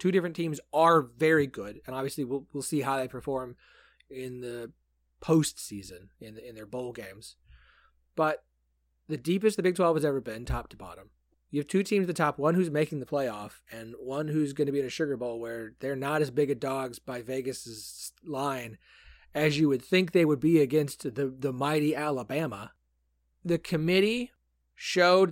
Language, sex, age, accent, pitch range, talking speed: English, male, 30-49, American, 135-180 Hz, 195 wpm